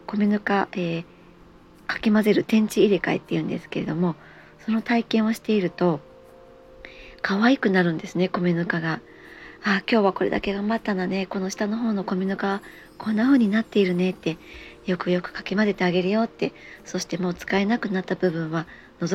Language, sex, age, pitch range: Japanese, male, 40-59, 170-215 Hz